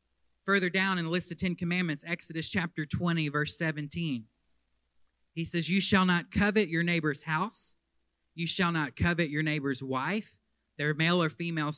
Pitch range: 125-180 Hz